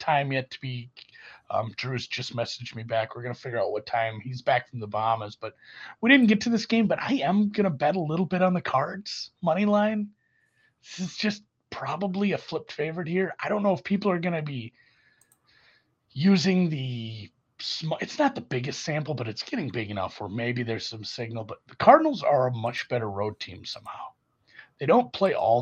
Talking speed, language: 205 wpm, English